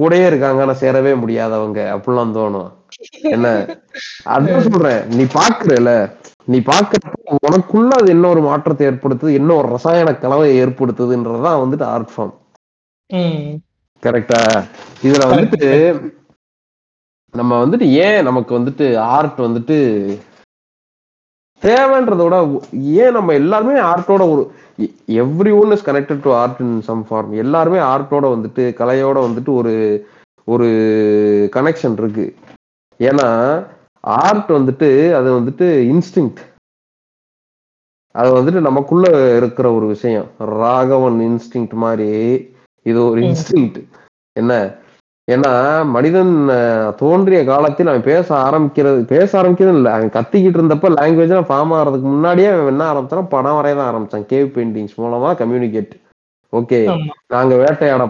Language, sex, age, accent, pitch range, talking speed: Tamil, male, 30-49, native, 120-155 Hz, 85 wpm